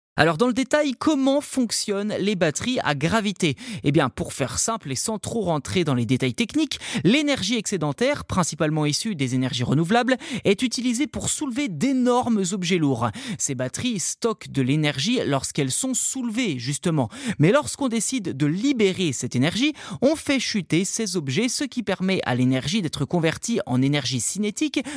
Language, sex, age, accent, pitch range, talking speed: French, male, 30-49, French, 150-235 Hz, 165 wpm